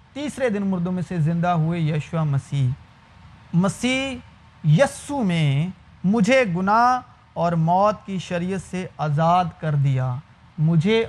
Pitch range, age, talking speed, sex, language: 155-200 Hz, 40-59, 125 wpm, male, Urdu